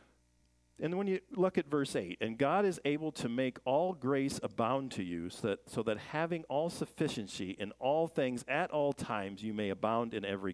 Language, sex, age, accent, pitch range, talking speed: English, male, 50-69, American, 95-155 Hz, 205 wpm